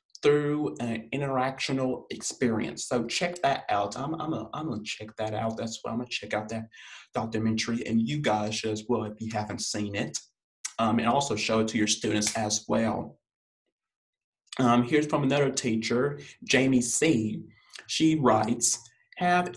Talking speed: 165 wpm